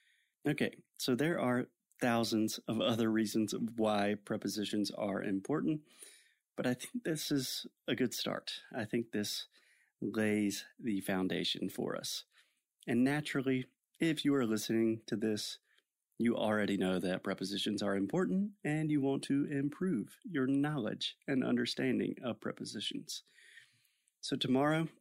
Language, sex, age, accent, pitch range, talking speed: Portuguese, male, 30-49, American, 105-135 Hz, 135 wpm